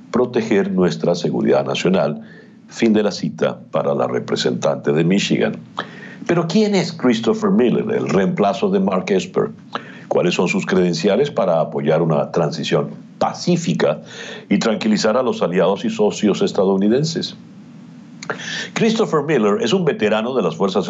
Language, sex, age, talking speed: Spanish, male, 60-79, 140 wpm